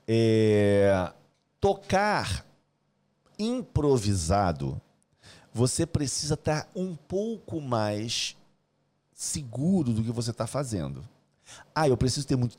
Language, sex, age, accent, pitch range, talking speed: Portuguese, male, 40-59, Brazilian, 115-160 Hz, 90 wpm